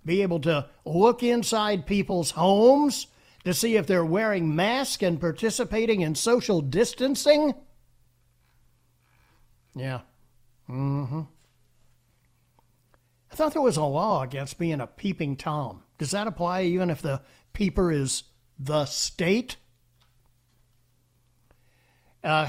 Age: 60-79